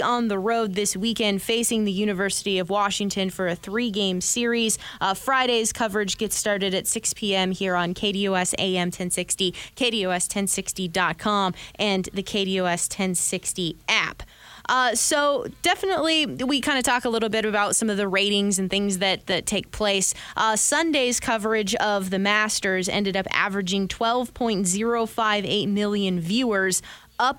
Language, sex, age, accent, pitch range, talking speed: English, female, 20-39, American, 190-220 Hz, 145 wpm